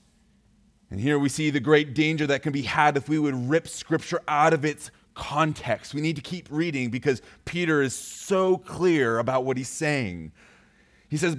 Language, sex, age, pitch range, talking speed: English, male, 30-49, 135-165 Hz, 190 wpm